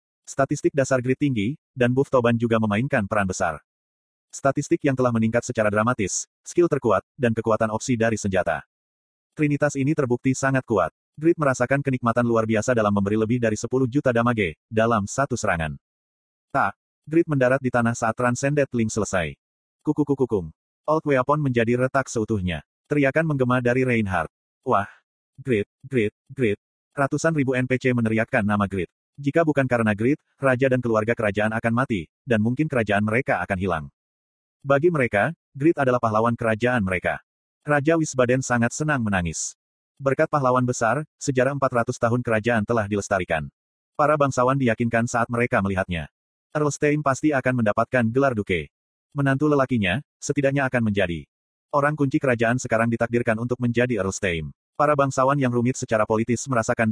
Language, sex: Indonesian, male